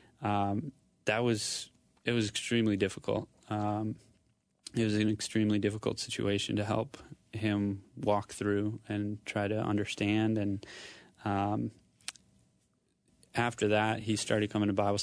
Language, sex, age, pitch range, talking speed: English, male, 20-39, 100-110 Hz, 130 wpm